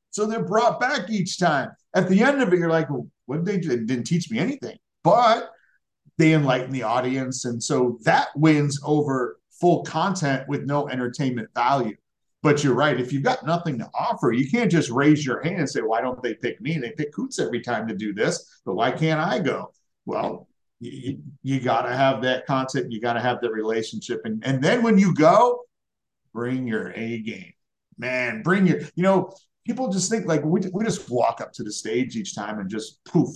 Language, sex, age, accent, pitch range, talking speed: English, male, 50-69, American, 125-175 Hz, 220 wpm